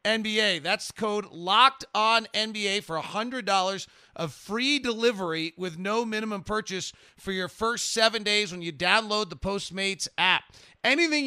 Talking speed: 145 wpm